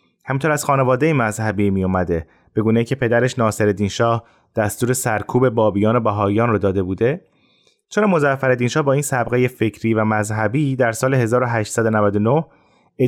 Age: 30-49